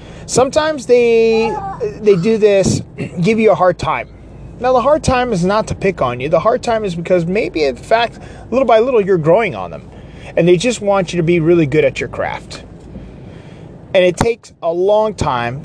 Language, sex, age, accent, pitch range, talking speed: English, male, 30-49, American, 155-215 Hz, 205 wpm